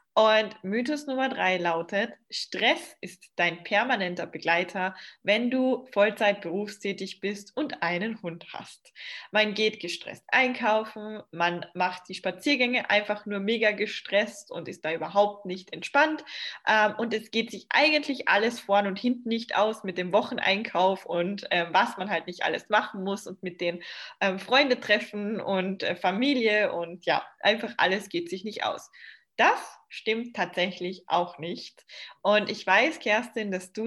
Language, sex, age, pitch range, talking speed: German, female, 20-39, 185-230 Hz, 150 wpm